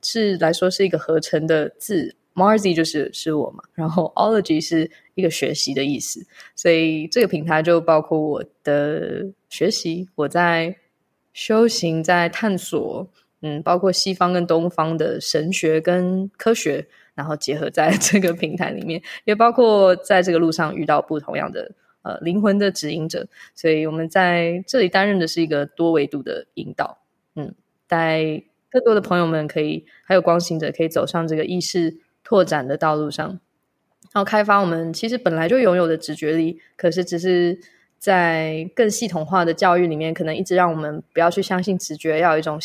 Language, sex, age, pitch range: Chinese, female, 20-39, 160-190 Hz